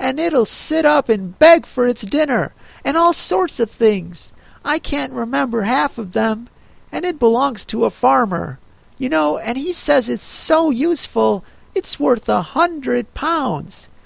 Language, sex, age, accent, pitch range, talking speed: English, male, 50-69, American, 175-275 Hz, 165 wpm